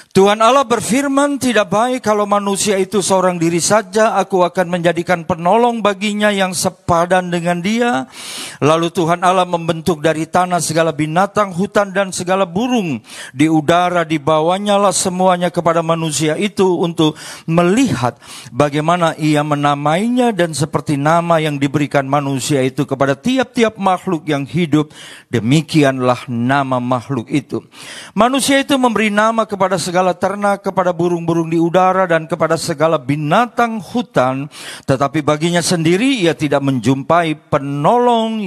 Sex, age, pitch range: male, 40-59, 150-200 Hz